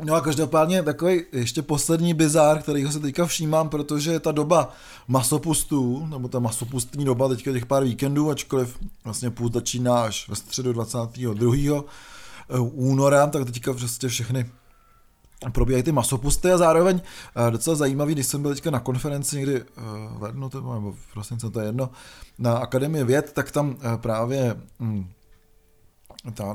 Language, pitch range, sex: Czech, 125-150 Hz, male